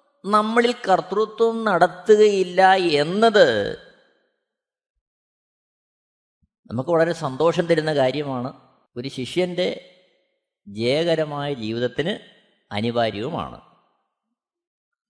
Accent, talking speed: native, 55 wpm